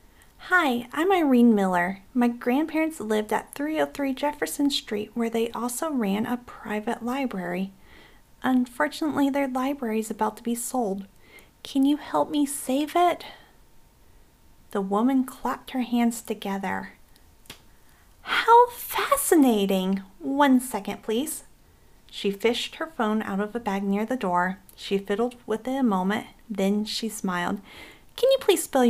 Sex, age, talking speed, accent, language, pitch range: female, 40-59, 140 wpm, American, English, 200-275 Hz